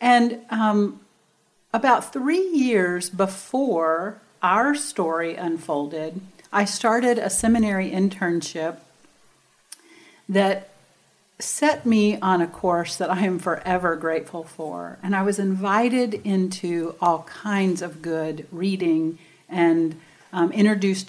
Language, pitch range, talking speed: English, 170-220 Hz, 110 wpm